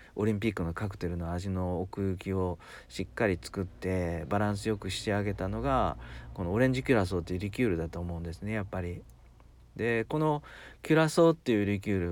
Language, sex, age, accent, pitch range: Japanese, male, 40-59, native, 85-115 Hz